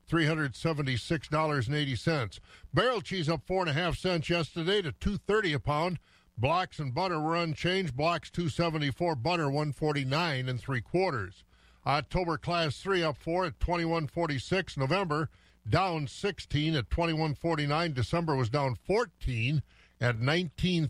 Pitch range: 135-175 Hz